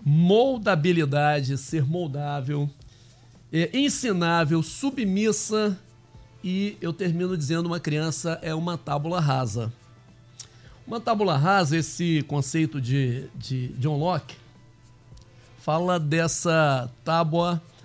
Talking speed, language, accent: 100 wpm, Portuguese, Brazilian